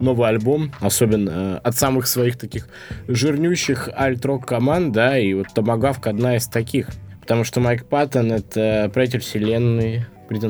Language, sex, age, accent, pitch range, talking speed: Russian, male, 20-39, native, 105-130 Hz, 150 wpm